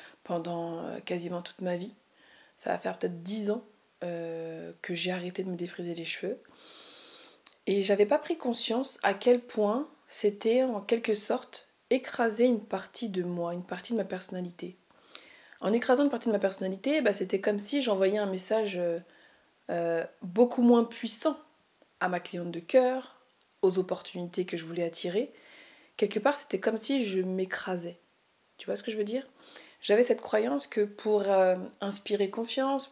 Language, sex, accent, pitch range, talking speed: French, female, French, 180-225 Hz, 170 wpm